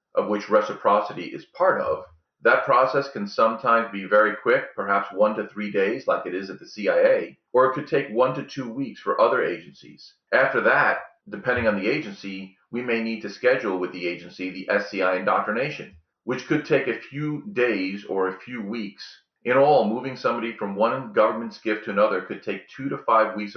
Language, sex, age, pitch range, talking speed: English, male, 40-59, 100-140 Hz, 200 wpm